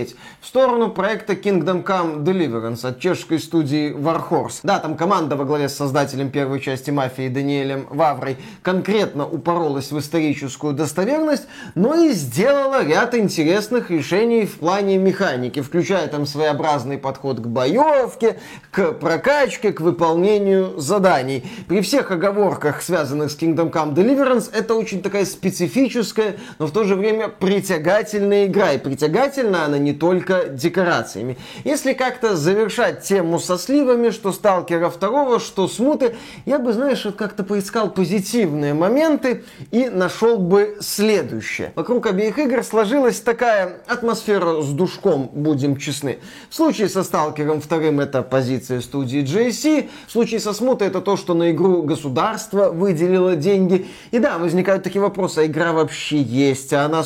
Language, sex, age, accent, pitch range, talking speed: Russian, male, 20-39, native, 155-220 Hz, 140 wpm